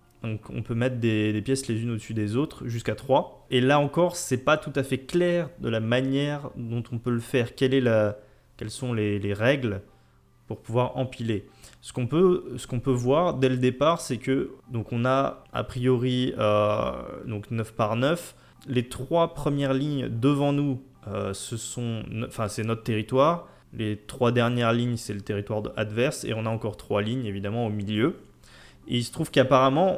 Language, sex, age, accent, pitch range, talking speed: French, male, 20-39, French, 110-135 Hz, 195 wpm